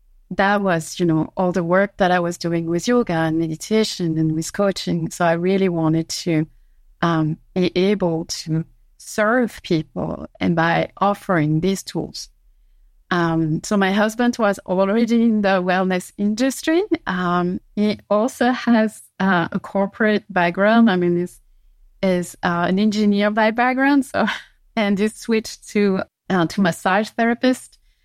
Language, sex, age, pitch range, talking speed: English, female, 30-49, 175-215 Hz, 150 wpm